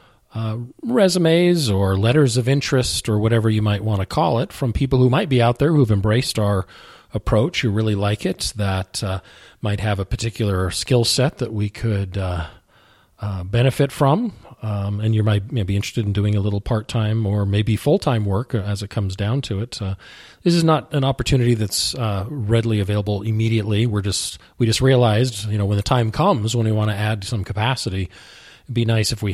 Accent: American